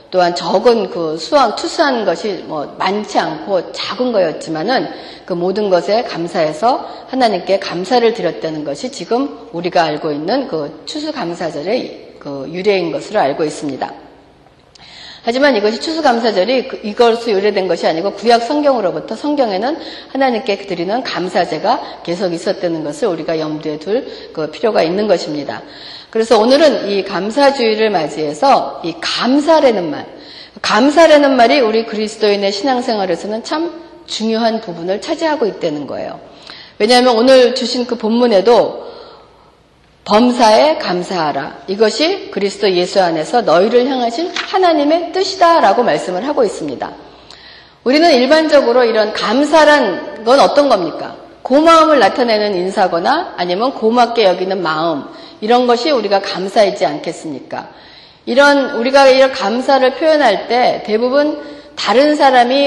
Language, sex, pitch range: Korean, female, 190-280 Hz